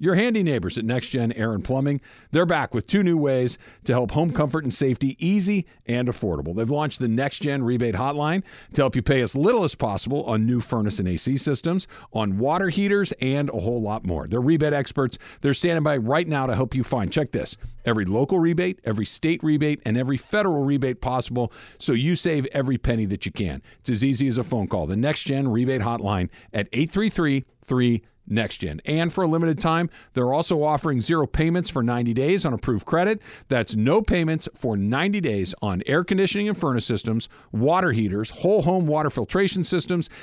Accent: American